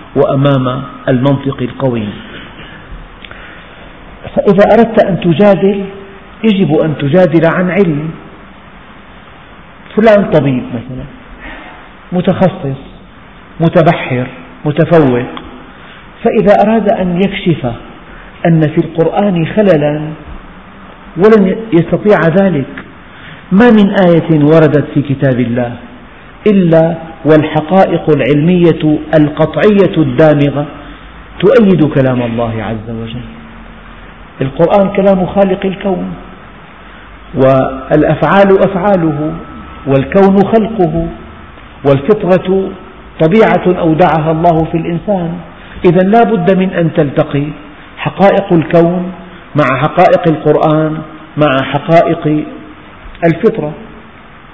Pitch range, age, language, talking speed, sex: 145-190 Hz, 50-69, Arabic, 80 wpm, male